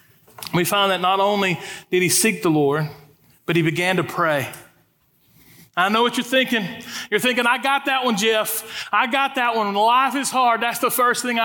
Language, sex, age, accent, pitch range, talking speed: English, male, 40-59, American, 190-240 Hz, 205 wpm